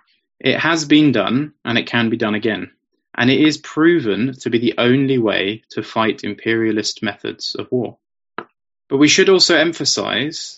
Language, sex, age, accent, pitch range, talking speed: English, male, 20-39, British, 110-135 Hz, 170 wpm